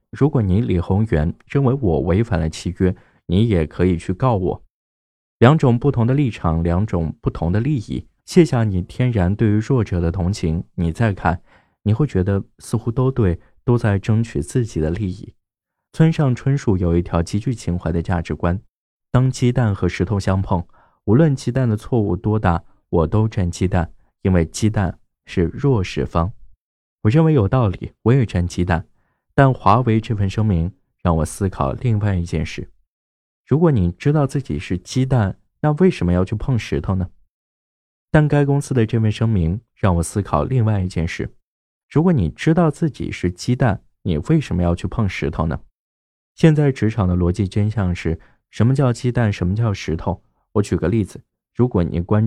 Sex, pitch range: male, 85-120 Hz